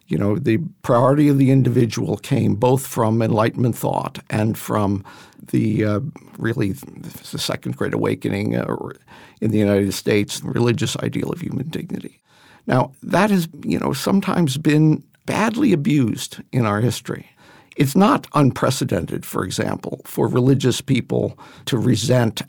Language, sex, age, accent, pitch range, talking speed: English, male, 50-69, American, 110-145 Hz, 140 wpm